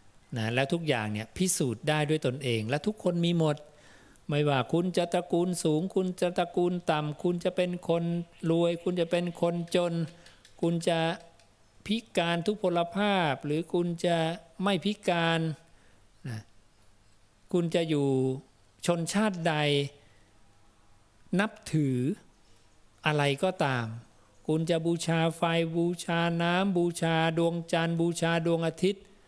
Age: 60-79